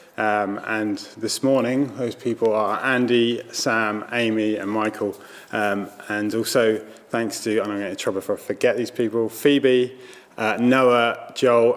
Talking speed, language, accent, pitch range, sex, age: 165 wpm, English, British, 105-130 Hz, male, 20-39